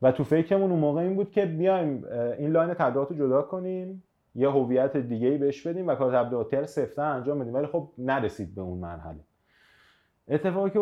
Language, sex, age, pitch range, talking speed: Persian, male, 30-49, 115-150 Hz, 170 wpm